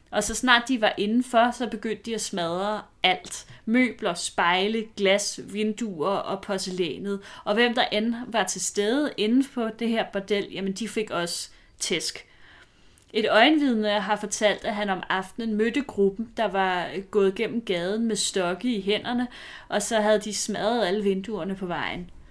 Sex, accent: female, native